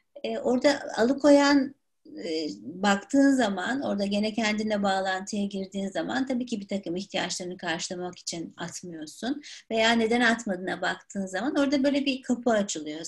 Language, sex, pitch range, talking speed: Turkish, female, 205-295 Hz, 140 wpm